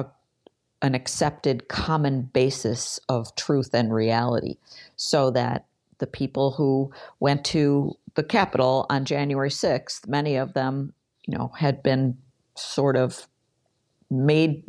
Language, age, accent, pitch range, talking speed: English, 50-69, American, 125-150 Hz, 125 wpm